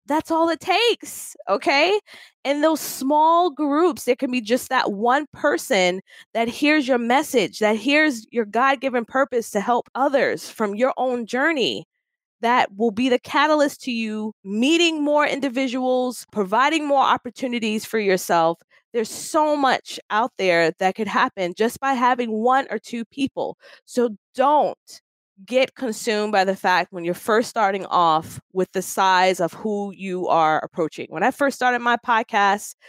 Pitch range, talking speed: 200-275 Hz, 160 wpm